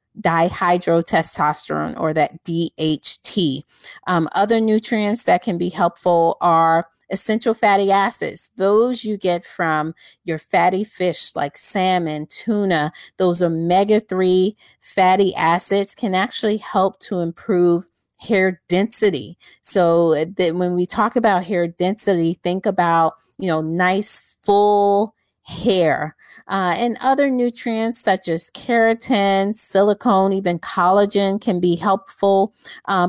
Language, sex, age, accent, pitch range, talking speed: English, female, 30-49, American, 175-210 Hz, 115 wpm